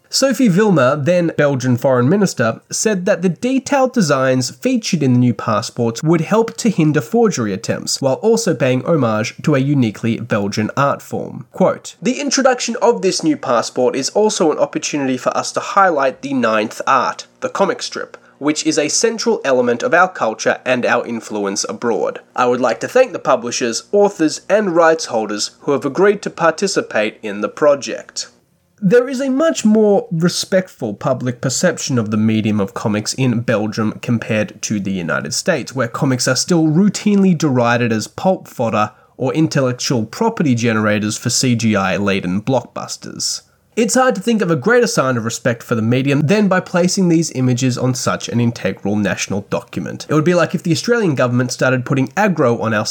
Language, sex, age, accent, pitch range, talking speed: English, male, 20-39, Australian, 120-200 Hz, 175 wpm